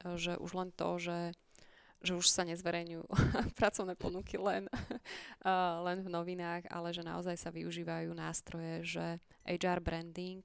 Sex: female